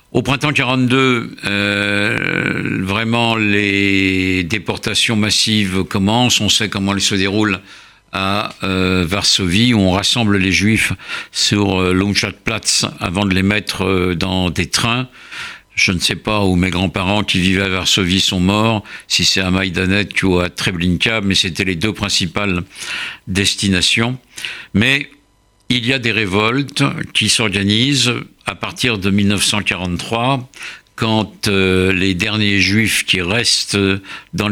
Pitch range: 95-115 Hz